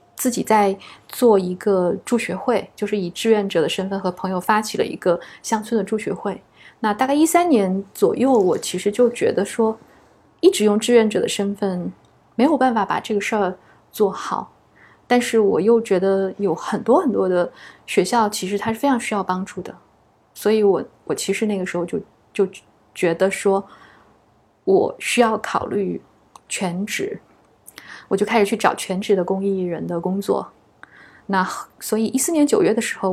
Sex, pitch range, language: female, 190-230 Hz, Chinese